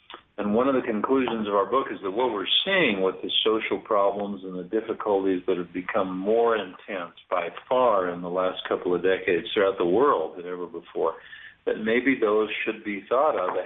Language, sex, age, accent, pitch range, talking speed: English, male, 50-69, American, 95-115 Hz, 200 wpm